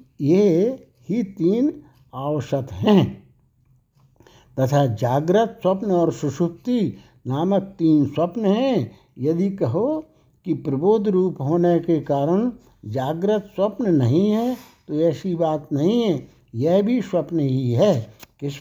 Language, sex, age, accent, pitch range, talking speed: Hindi, male, 60-79, native, 140-200 Hz, 120 wpm